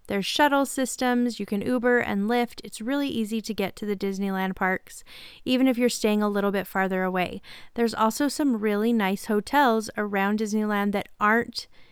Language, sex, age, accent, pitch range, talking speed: English, female, 30-49, American, 200-245 Hz, 180 wpm